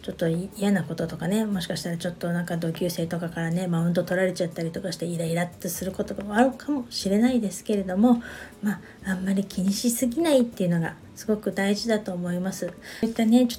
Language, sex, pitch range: Japanese, female, 180-240 Hz